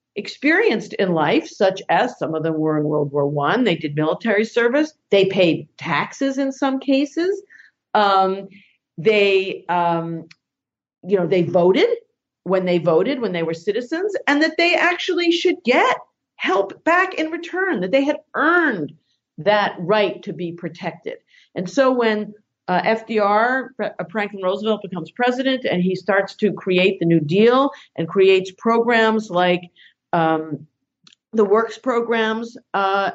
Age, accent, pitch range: 50-69, American, 170-235 Hz